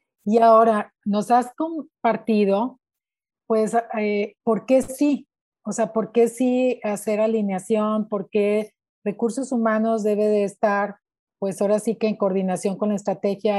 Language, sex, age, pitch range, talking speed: Spanish, female, 40-59, 200-245 Hz, 145 wpm